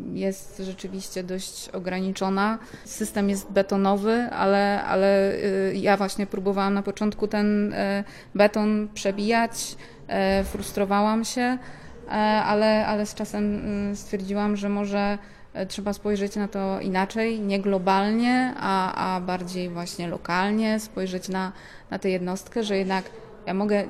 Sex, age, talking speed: female, 20-39, 120 wpm